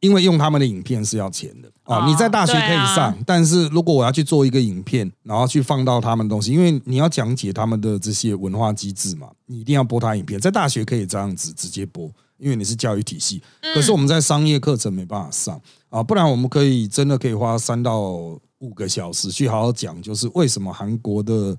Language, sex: Chinese, male